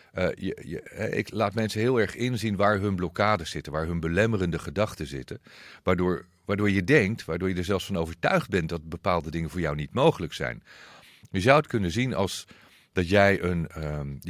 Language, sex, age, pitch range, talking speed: Dutch, male, 40-59, 85-105 Hz, 190 wpm